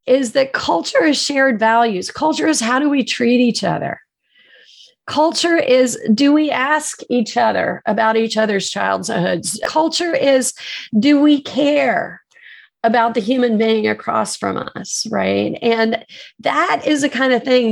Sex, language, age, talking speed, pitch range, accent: female, English, 40-59, 150 wpm, 225-285 Hz, American